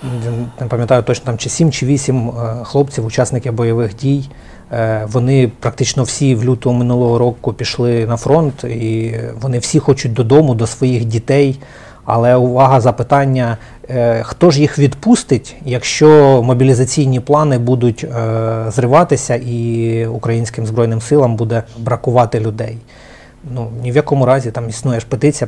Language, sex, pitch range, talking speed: Ukrainian, male, 115-140 Hz, 135 wpm